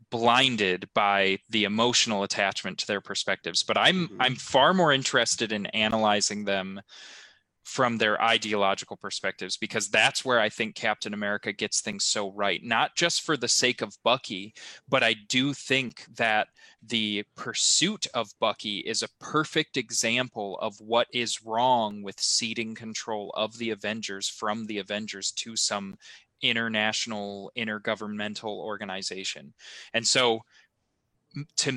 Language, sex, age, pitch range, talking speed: English, male, 20-39, 105-125 Hz, 140 wpm